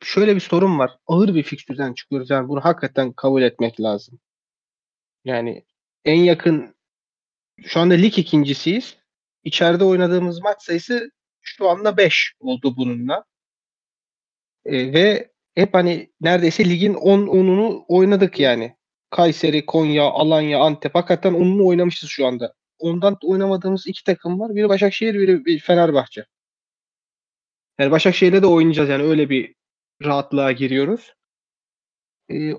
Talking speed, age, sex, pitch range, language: 130 wpm, 30-49, male, 155-195 Hz, Turkish